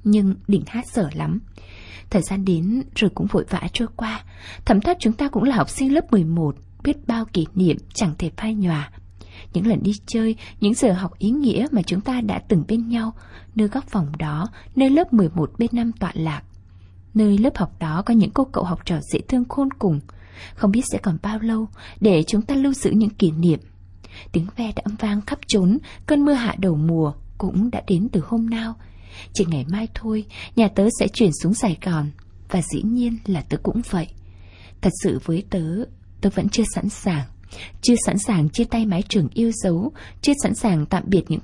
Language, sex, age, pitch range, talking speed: Vietnamese, female, 20-39, 160-230 Hz, 215 wpm